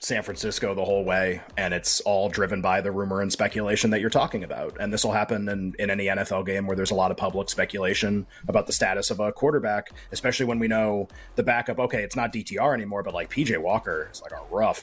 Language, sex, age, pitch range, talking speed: English, male, 30-49, 100-135 Hz, 240 wpm